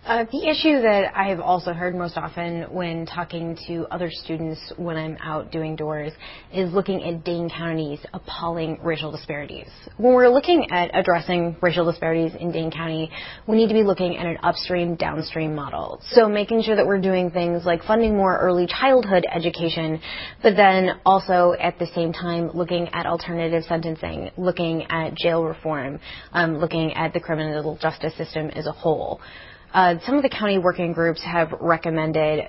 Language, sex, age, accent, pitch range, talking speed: English, female, 20-39, American, 160-185 Hz, 175 wpm